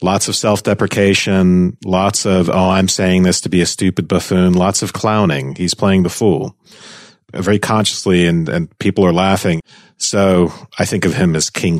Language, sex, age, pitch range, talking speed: English, male, 40-59, 90-105 Hz, 180 wpm